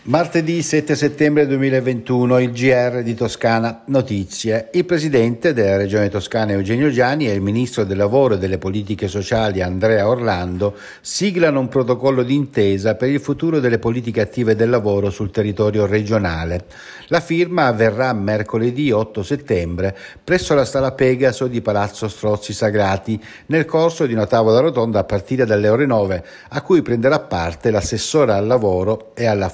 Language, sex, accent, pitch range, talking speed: Italian, male, native, 105-135 Hz, 155 wpm